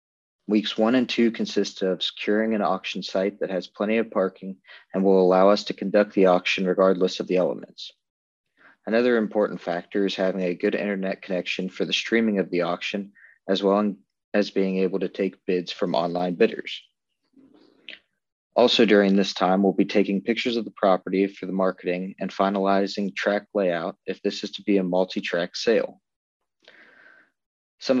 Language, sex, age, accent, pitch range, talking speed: English, male, 40-59, American, 95-105 Hz, 170 wpm